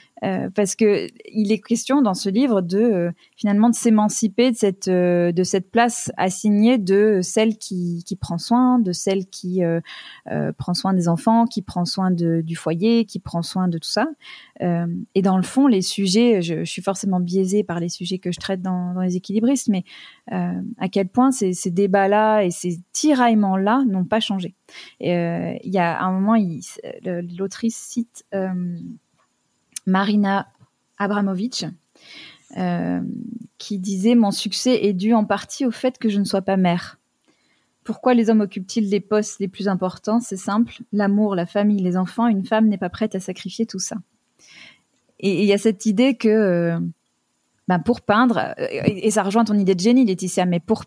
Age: 20-39